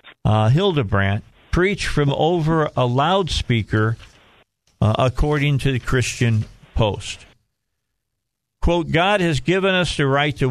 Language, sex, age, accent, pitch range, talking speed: English, male, 50-69, American, 115-150 Hz, 120 wpm